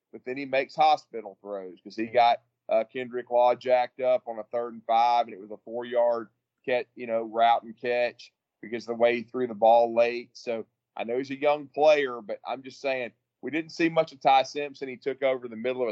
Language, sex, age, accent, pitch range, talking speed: English, male, 30-49, American, 120-140 Hz, 240 wpm